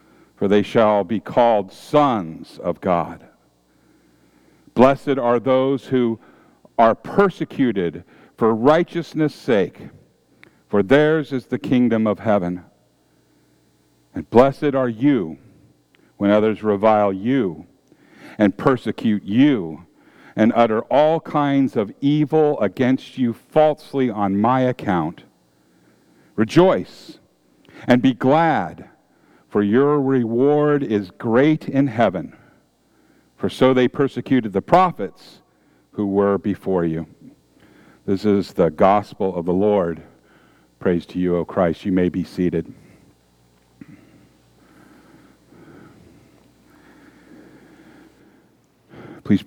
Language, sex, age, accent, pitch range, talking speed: English, male, 50-69, American, 90-130 Hz, 105 wpm